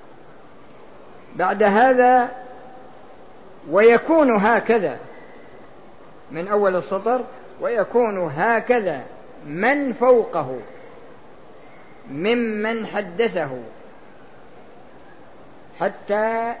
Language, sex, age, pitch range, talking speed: Arabic, female, 50-69, 185-230 Hz, 50 wpm